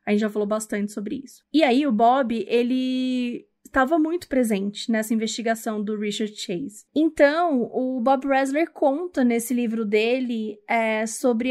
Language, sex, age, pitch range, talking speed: Portuguese, female, 20-39, 220-265 Hz, 155 wpm